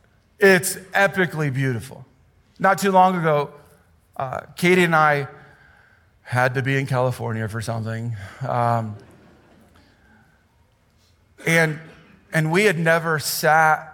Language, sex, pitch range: English, male, 120-155 Hz